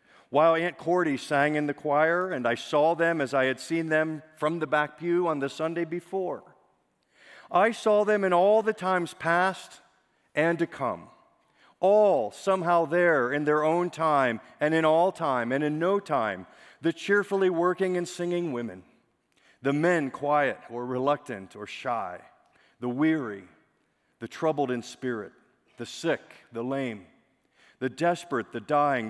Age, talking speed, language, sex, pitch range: 40-59, 160 wpm, English, male, 115-160 Hz